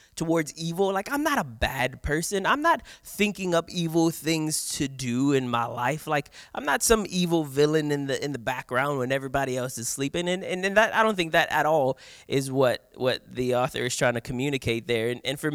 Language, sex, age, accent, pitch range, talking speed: English, male, 20-39, American, 125-180 Hz, 225 wpm